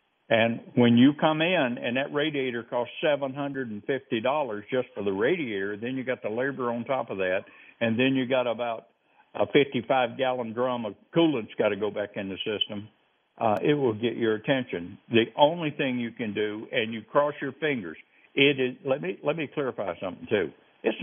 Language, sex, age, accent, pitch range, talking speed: English, male, 60-79, American, 115-145 Hz, 205 wpm